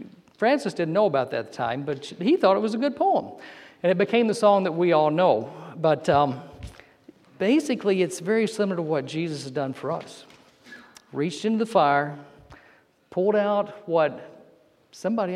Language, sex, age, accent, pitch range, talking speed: English, male, 50-69, American, 155-215 Hz, 180 wpm